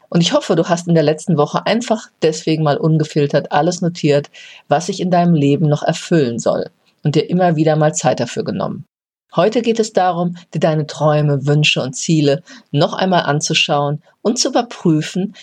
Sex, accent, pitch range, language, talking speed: female, German, 145-185 Hz, German, 185 wpm